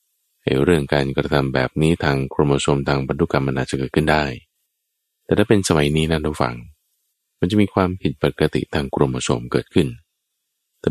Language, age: Thai, 20-39